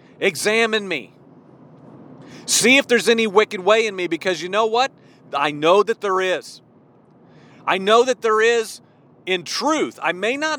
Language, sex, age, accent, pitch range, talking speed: English, male, 40-59, American, 170-240 Hz, 165 wpm